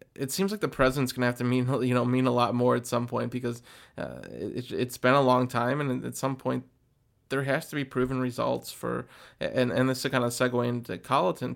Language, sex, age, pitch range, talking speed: English, male, 20-39, 125-140 Hz, 235 wpm